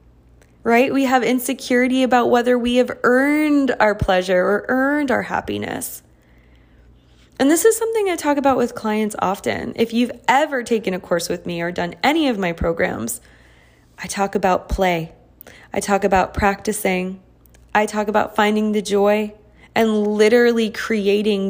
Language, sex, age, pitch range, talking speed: English, female, 20-39, 180-245 Hz, 155 wpm